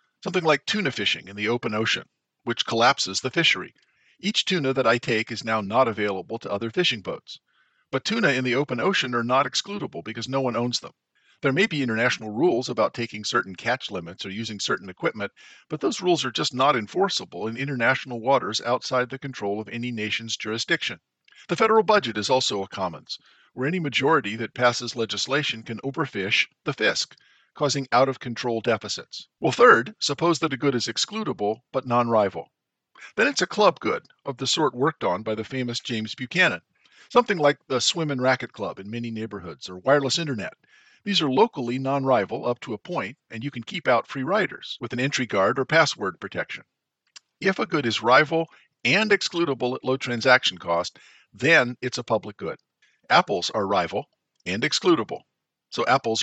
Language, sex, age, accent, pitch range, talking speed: English, male, 50-69, American, 110-140 Hz, 185 wpm